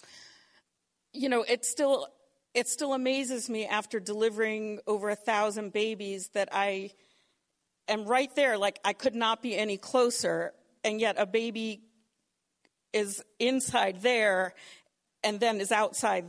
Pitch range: 205-260 Hz